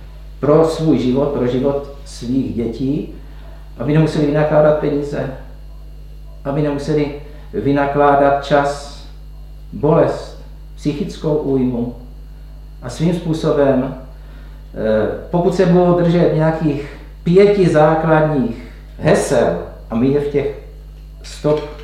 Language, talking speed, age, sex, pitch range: Czech, 95 wpm, 50-69, male, 130-155 Hz